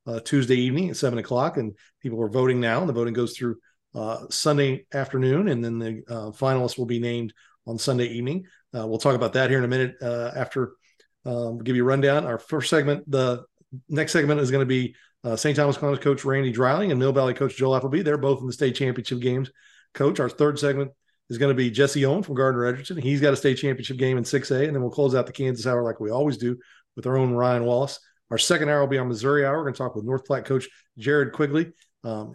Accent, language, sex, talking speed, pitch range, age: American, English, male, 250 wpm, 125-145 Hz, 40-59